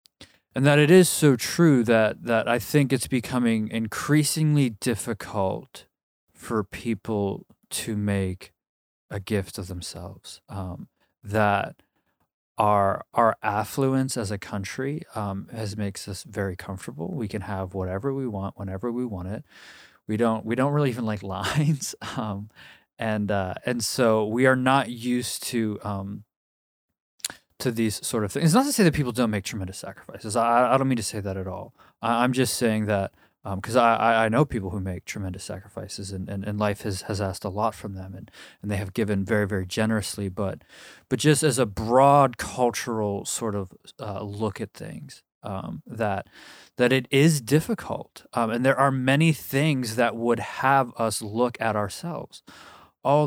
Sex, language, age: male, English, 20-39